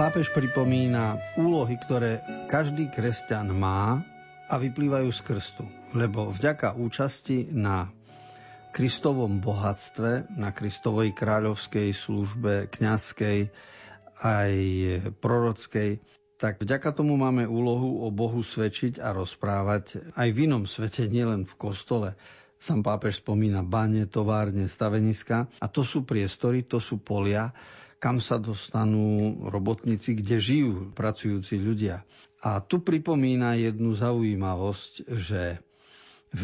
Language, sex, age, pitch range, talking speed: Slovak, male, 50-69, 105-130 Hz, 115 wpm